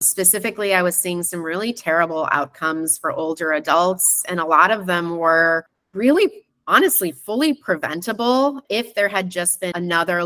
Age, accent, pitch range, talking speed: 30-49, American, 170-210 Hz, 160 wpm